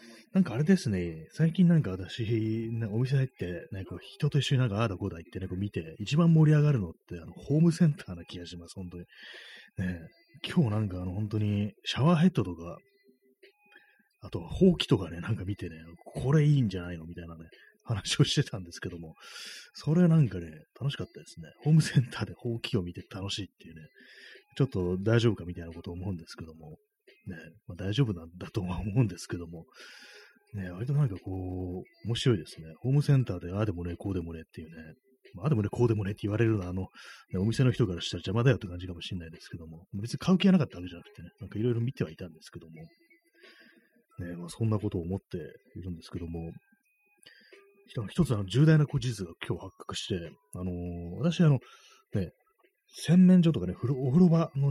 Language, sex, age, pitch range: Japanese, male, 30-49, 90-145 Hz